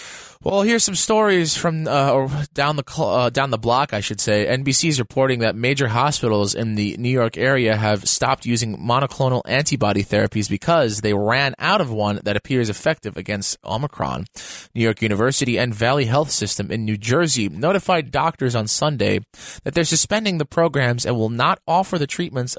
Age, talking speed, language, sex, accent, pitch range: 20-39, 185 wpm, English, male, American, 110-155 Hz